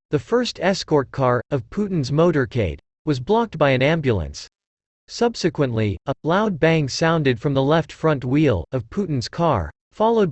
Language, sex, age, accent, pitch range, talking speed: English, male, 40-59, American, 130-175 Hz, 150 wpm